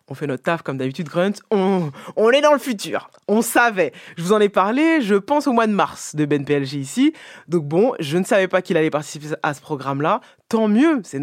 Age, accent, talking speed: 20-39, French, 240 wpm